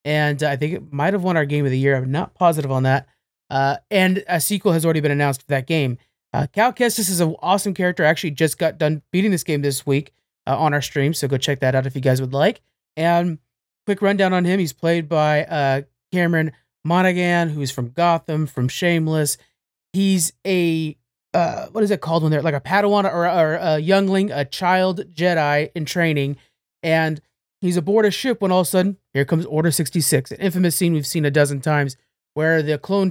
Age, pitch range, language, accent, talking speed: 30-49, 145-180 Hz, English, American, 220 wpm